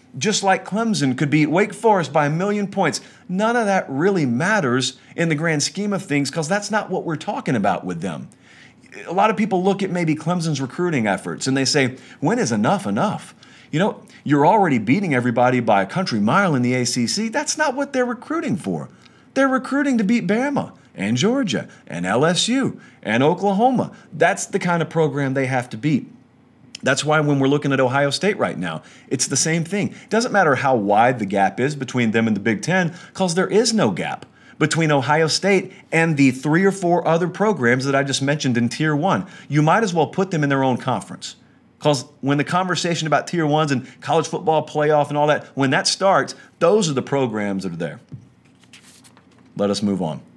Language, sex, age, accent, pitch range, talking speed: English, male, 40-59, American, 135-195 Hz, 210 wpm